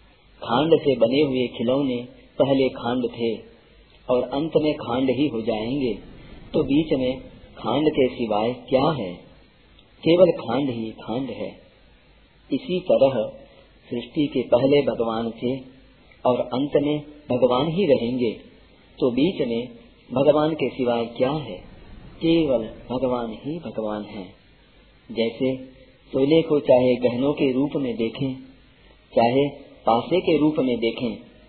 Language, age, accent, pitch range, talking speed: Hindi, 40-59, native, 120-155 Hz, 130 wpm